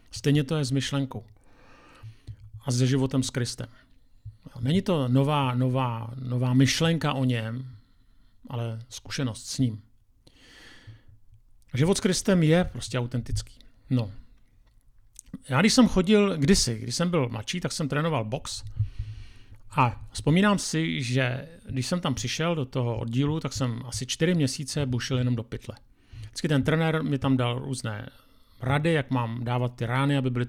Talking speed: 150 wpm